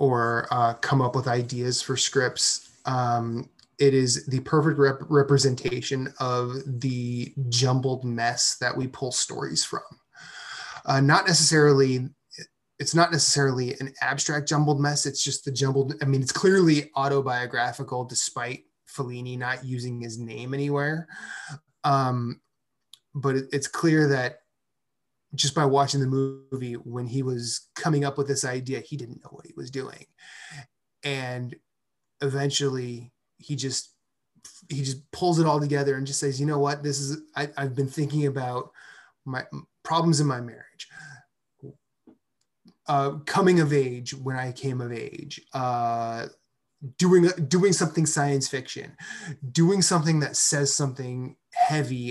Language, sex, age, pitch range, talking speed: English, male, 20-39, 125-145 Hz, 140 wpm